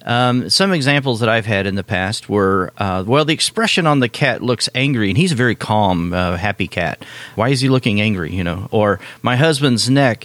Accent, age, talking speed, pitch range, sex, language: American, 40-59, 220 wpm, 105-135 Hz, male, English